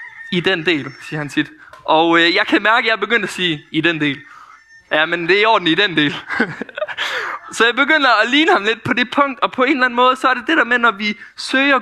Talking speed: 270 wpm